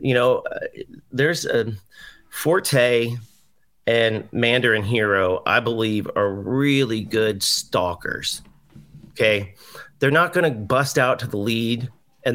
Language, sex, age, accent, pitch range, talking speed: English, male, 30-49, American, 105-130 Hz, 125 wpm